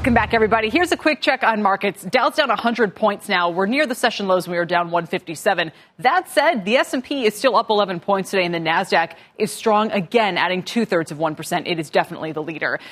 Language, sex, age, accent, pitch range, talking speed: English, female, 20-39, American, 180-255 Hz, 225 wpm